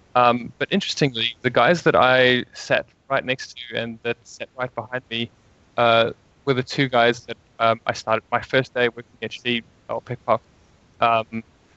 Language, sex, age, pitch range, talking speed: English, male, 20-39, 115-130 Hz, 205 wpm